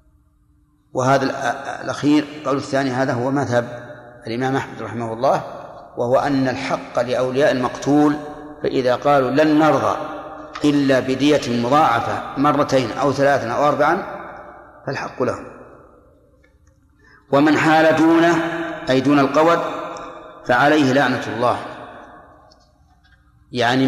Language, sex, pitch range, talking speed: Arabic, male, 125-145 Hz, 100 wpm